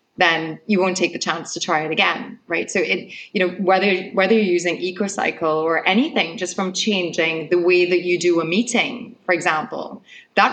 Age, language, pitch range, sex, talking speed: 30-49, English, 170-195 Hz, female, 200 wpm